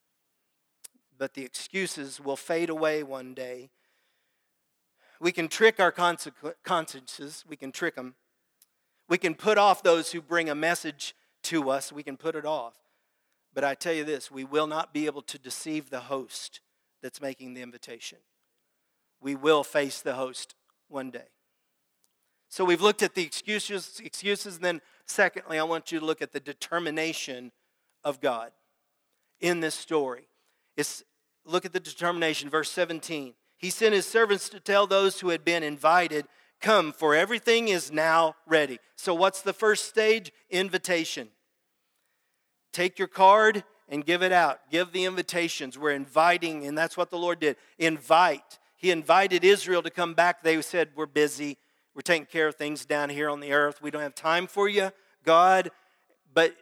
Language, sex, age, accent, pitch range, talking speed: English, male, 40-59, American, 145-180 Hz, 165 wpm